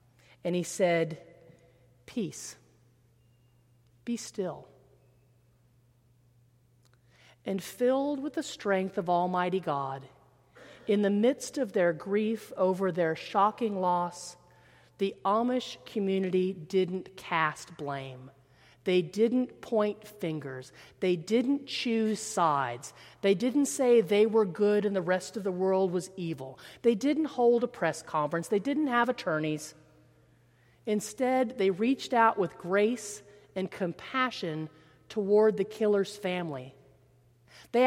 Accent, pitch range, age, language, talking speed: American, 150-235 Hz, 40-59, English, 120 wpm